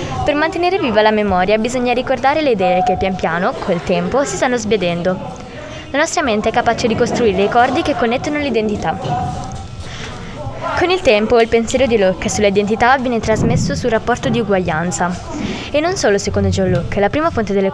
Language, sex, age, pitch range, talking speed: Italian, female, 20-39, 205-265 Hz, 180 wpm